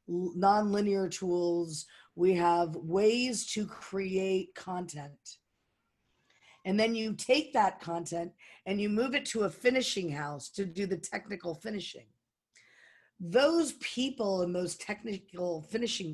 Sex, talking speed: female, 125 wpm